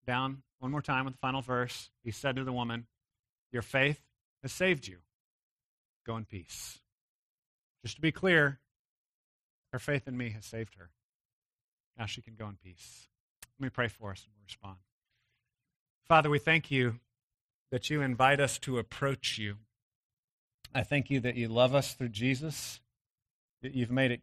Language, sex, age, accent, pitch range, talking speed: English, male, 40-59, American, 115-130 Hz, 170 wpm